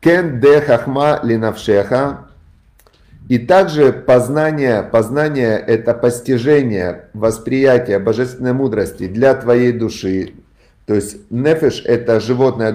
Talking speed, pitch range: 80 wpm, 110-135 Hz